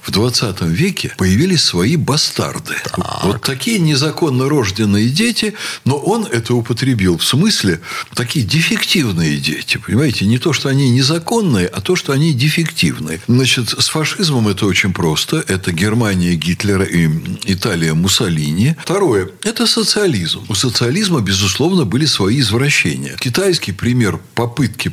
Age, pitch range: 60-79, 105-160 Hz